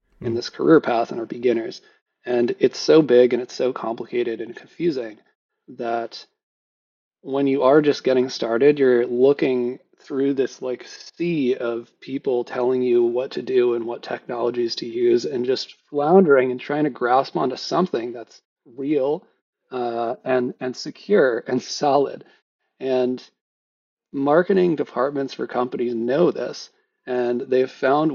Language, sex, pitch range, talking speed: English, male, 120-145 Hz, 145 wpm